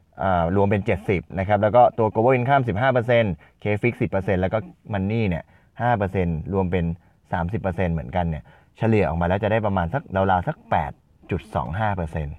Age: 20-39